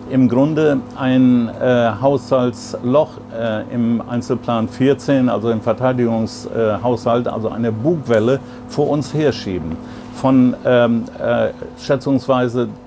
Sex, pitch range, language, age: male, 120-135 Hz, German, 50-69